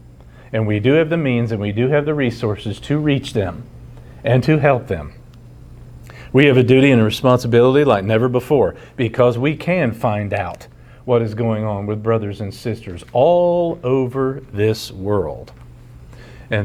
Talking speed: 170 wpm